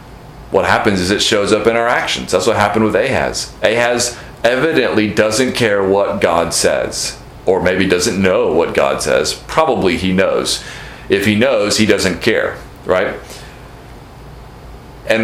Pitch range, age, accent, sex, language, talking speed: 110-130 Hz, 40-59, American, male, English, 155 wpm